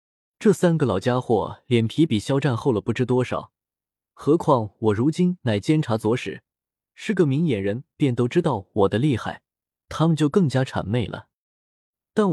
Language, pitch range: Chinese, 110-160 Hz